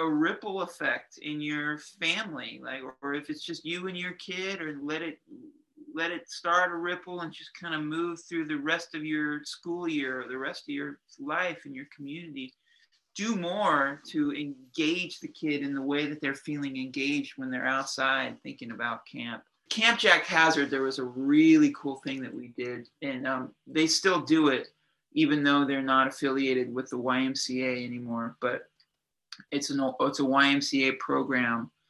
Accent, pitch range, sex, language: American, 135-175 Hz, male, English